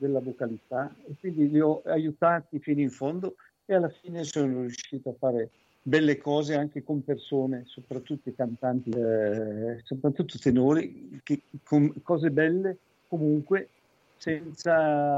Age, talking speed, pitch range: 50-69, 140 wpm, 125-150 Hz